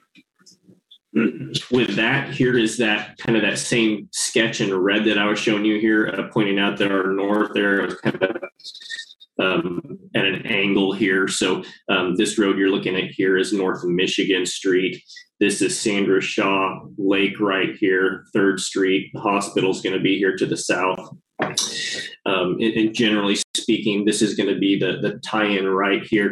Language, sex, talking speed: English, male, 175 wpm